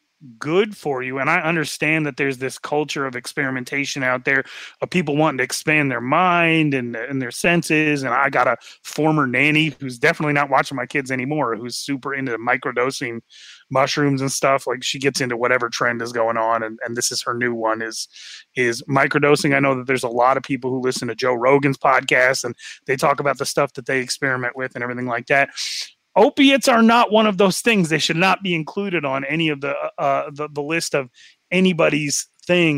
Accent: American